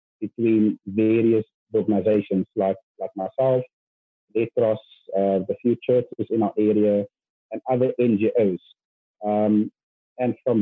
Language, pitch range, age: English, 105-125 Hz, 30-49